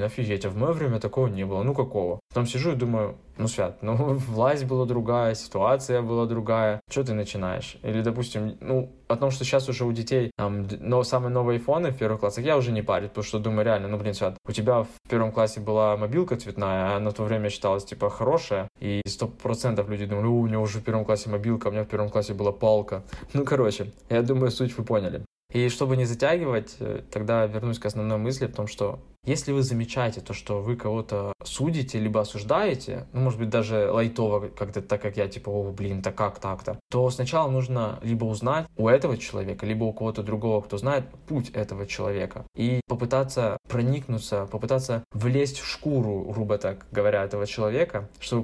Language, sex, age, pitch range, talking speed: Russian, male, 20-39, 105-125 Hz, 205 wpm